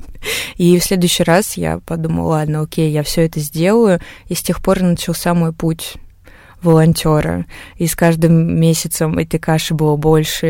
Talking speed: 160 wpm